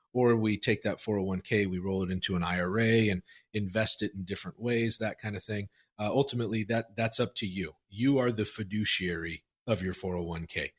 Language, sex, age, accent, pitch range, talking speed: English, male, 40-59, American, 95-120 Hz, 195 wpm